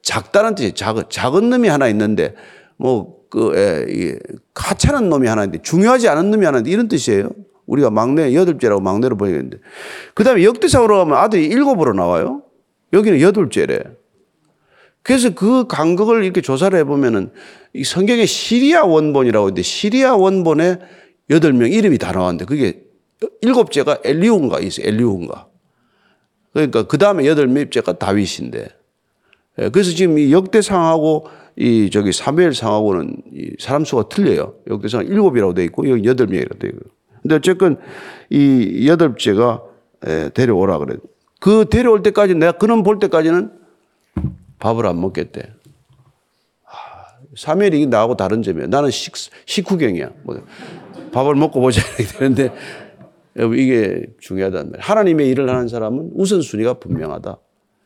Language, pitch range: Korean, 130-215 Hz